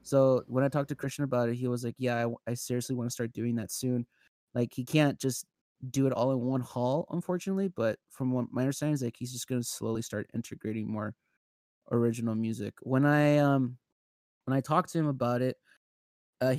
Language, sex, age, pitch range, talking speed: English, male, 20-39, 120-150 Hz, 215 wpm